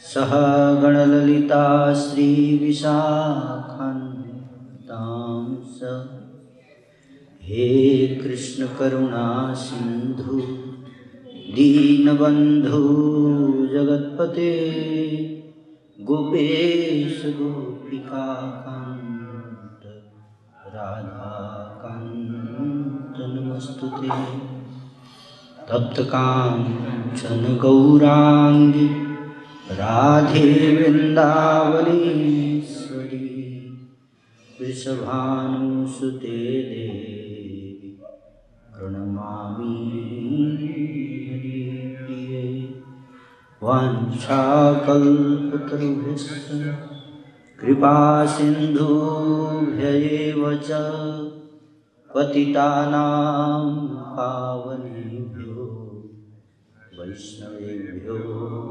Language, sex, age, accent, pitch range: Hindi, male, 30-49, native, 120-145 Hz